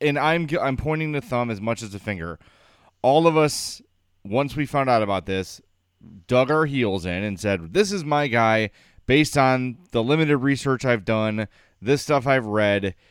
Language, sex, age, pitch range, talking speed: English, male, 30-49, 105-145 Hz, 190 wpm